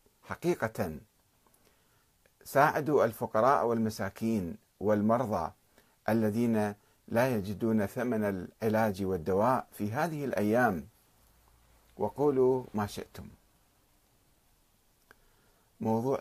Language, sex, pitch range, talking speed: Arabic, male, 100-125 Hz, 65 wpm